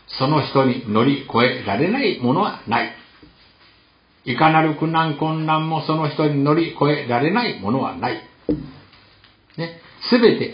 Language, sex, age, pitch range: Japanese, male, 60-79, 120-165 Hz